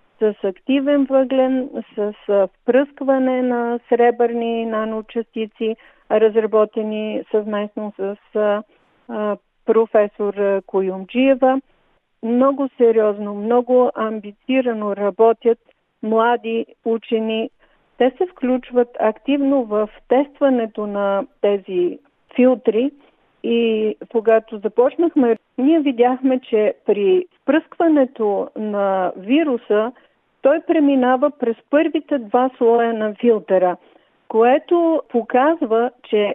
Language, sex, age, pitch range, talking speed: Bulgarian, female, 50-69, 215-260 Hz, 85 wpm